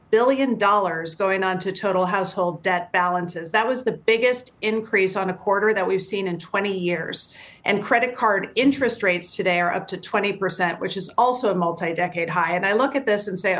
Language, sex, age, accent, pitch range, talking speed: English, female, 40-59, American, 185-230 Hz, 205 wpm